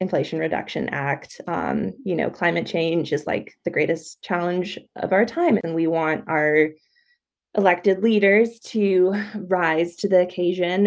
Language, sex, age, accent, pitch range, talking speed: English, female, 20-39, American, 165-210 Hz, 150 wpm